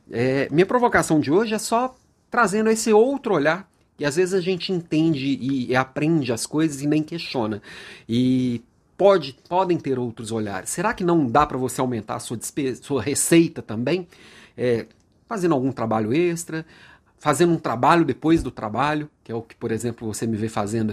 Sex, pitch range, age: male, 115-165 Hz, 40-59